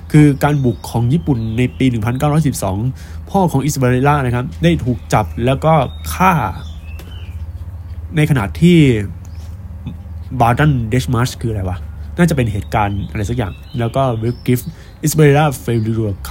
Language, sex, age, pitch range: Thai, male, 20-39, 90-140 Hz